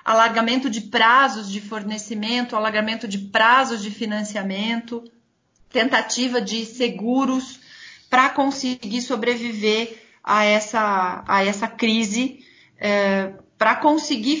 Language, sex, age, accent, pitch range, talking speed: Portuguese, female, 40-59, Brazilian, 205-245 Hz, 90 wpm